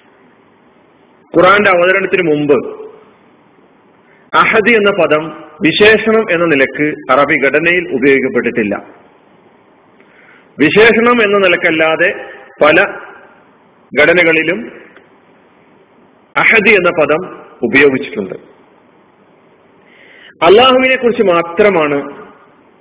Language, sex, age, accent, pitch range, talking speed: Malayalam, male, 40-59, native, 145-225 Hz, 65 wpm